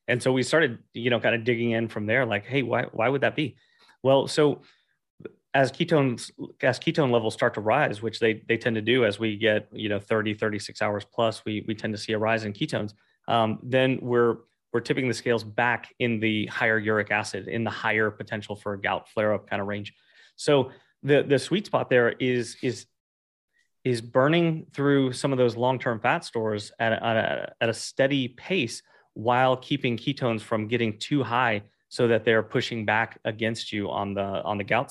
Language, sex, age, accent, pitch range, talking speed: English, male, 30-49, American, 110-130 Hz, 210 wpm